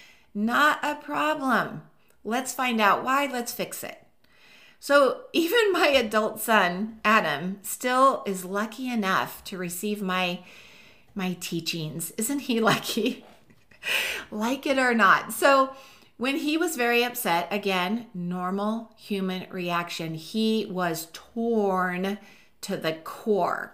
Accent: American